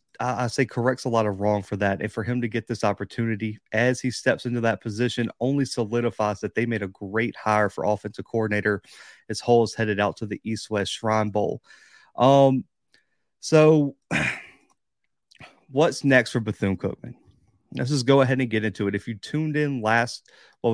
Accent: American